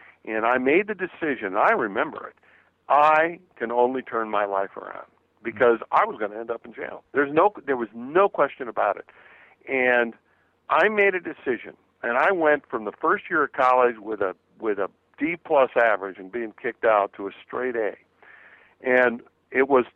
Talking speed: 195 wpm